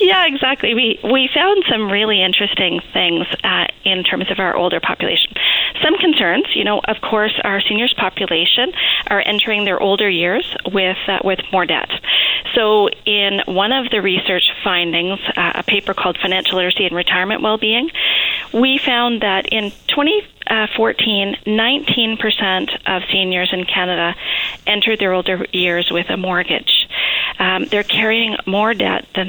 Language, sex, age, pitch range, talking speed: English, female, 40-59, 180-220 Hz, 150 wpm